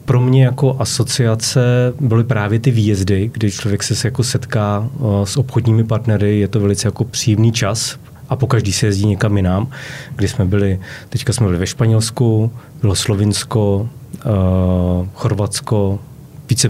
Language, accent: Czech, native